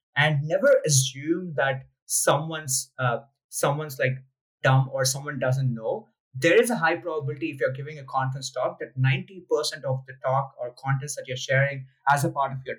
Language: English